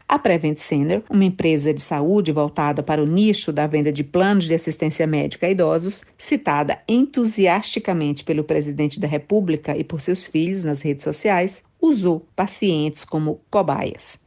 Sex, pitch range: female, 155-210 Hz